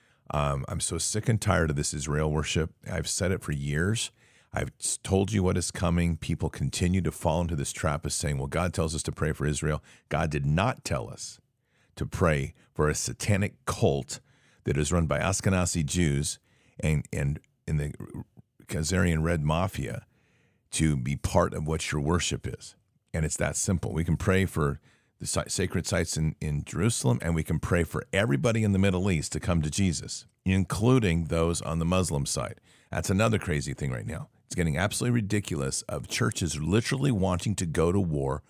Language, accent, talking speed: English, American, 190 wpm